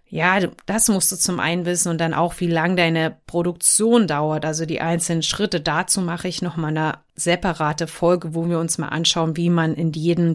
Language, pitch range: German, 165-195 Hz